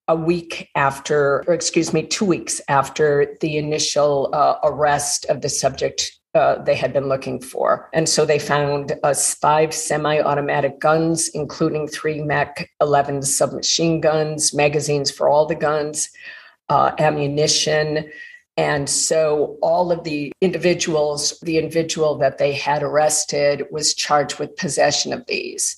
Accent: American